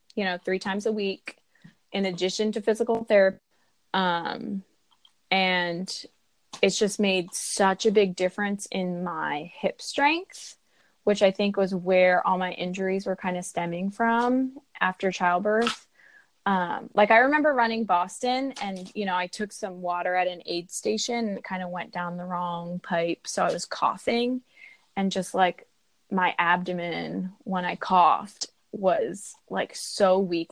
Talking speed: 160 wpm